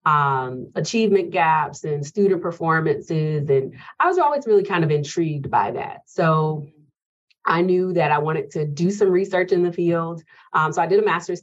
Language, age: English, 30-49